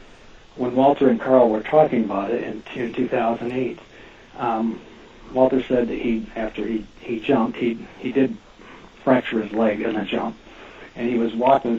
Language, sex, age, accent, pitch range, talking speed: English, male, 60-79, American, 105-125 Hz, 165 wpm